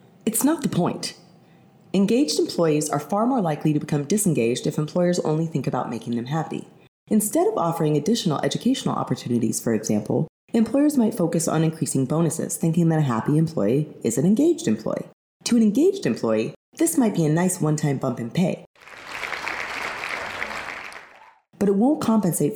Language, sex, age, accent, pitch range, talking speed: English, female, 30-49, American, 135-205 Hz, 160 wpm